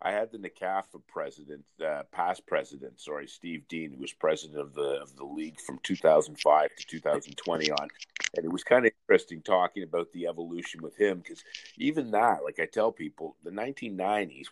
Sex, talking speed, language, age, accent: male, 190 wpm, English, 50-69, American